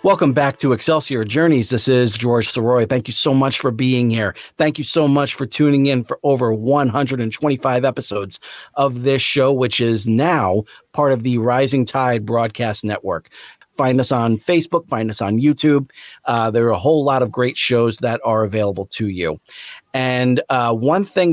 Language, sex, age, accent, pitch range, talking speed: English, male, 40-59, American, 115-140 Hz, 185 wpm